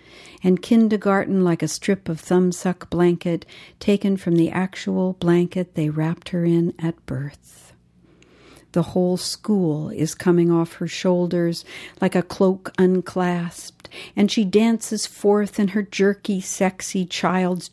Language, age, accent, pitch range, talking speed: English, 60-79, American, 165-190 Hz, 135 wpm